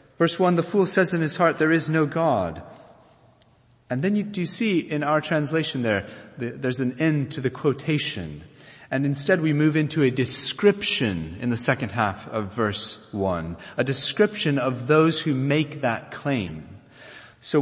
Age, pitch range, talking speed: 30-49, 120-155 Hz, 170 wpm